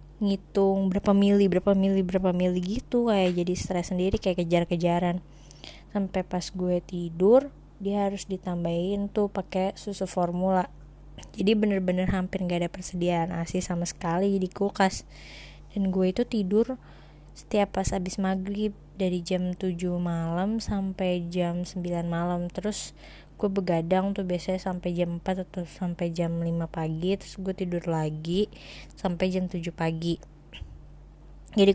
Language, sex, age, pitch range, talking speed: Indonesian, female, 20-39, 175-195 Hz, 140 wpm